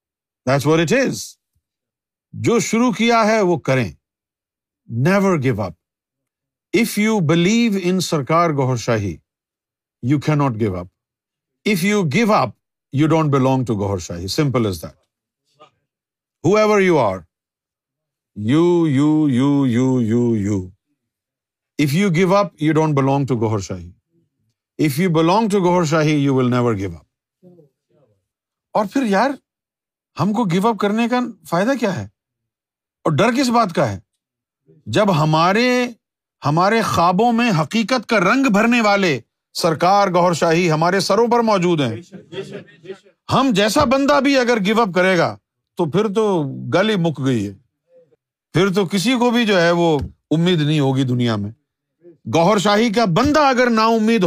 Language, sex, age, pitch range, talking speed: Urdu, male, 50-69, 130-205 Hz, 135 wpm